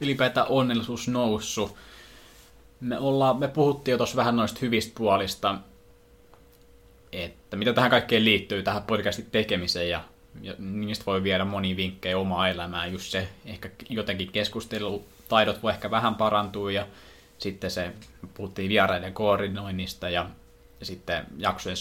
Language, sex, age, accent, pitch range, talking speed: Finnish, male, 20-39, native, 95-110 Hz, 130 wpm